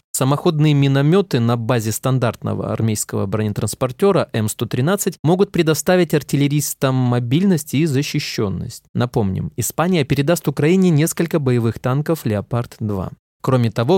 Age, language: 20-39, Russian